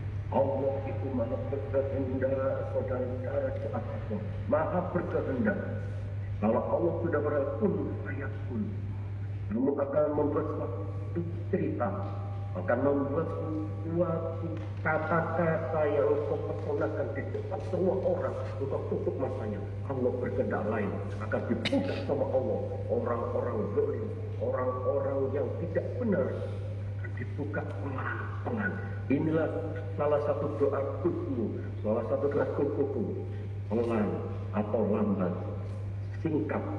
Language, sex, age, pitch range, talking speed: Indonesian, male, 50-69, 100-110 Hz, 95 wpm